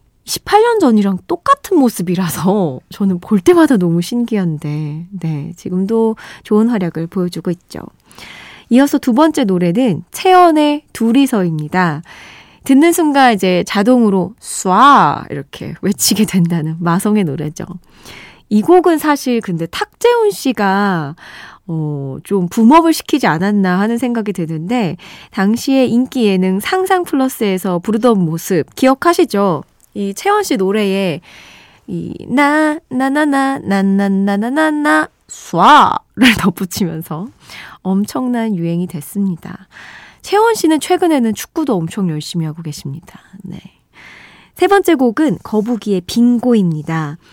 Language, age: Korean, 20-39